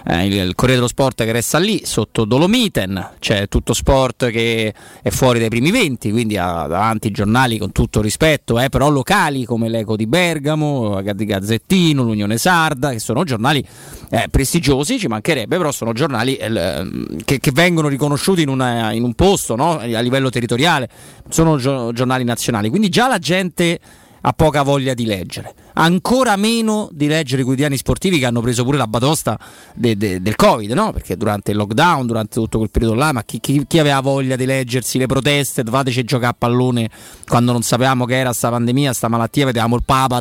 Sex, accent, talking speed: male, native, 185 wpm